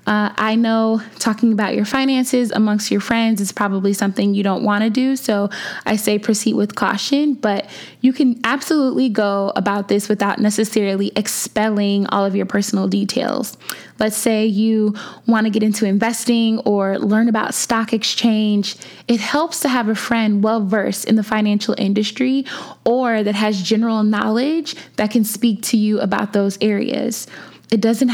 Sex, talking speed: female, 165 wpm